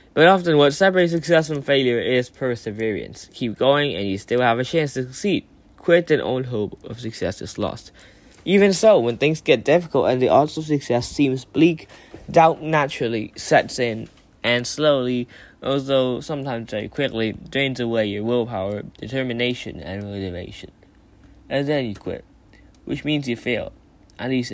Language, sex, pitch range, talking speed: English, male, 105-140 Hz, 165 wpm